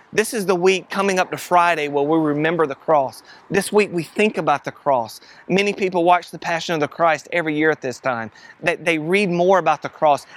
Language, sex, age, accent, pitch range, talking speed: English, male, 30-49, American, 150-180 Hz, 225 wpm